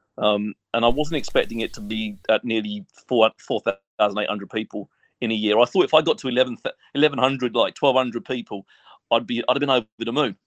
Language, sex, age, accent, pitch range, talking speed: English, male, 40-59, British, 110-135 Hz, 225 wpm